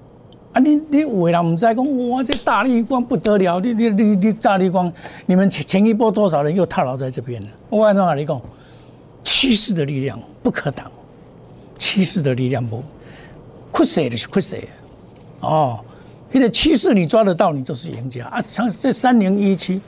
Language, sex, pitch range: Chinese, male, 150-235 Hz